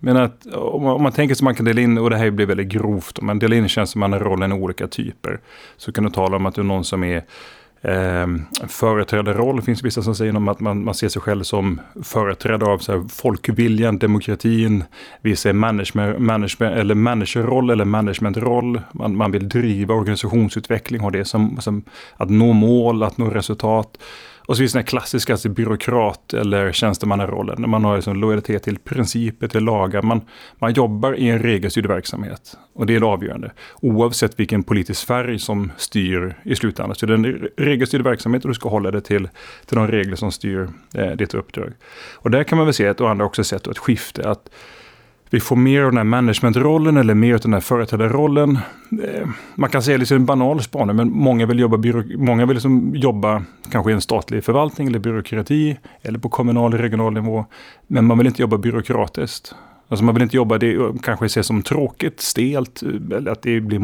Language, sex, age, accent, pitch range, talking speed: Swedish, male, 30-49, native, 105-120 Hz, 210 wpm